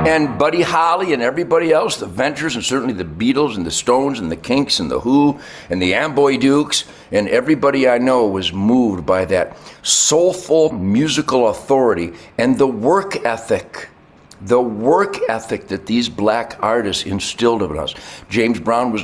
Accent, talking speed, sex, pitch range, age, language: American, 165 wpm, male, 95-125 Hz, 60-79, English